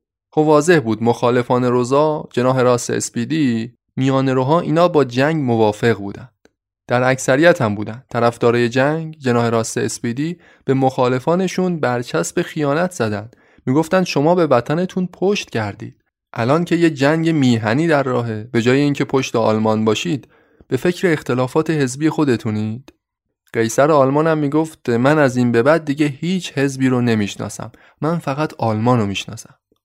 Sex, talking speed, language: male, 140 wpm, Persian